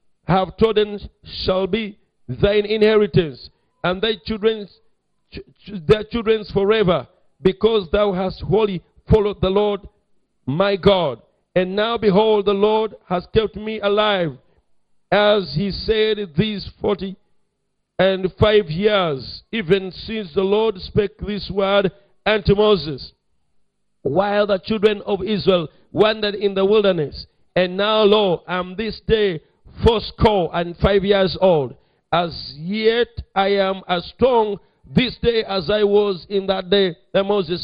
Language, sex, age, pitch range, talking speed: English, male, 50-69, 185-215 Hz, 135 wpm